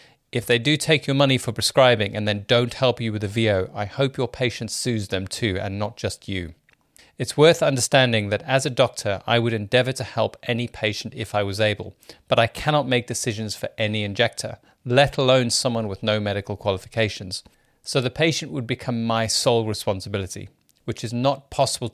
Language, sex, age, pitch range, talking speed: English, male, 40-59, 105-130 Hz, 195 wpm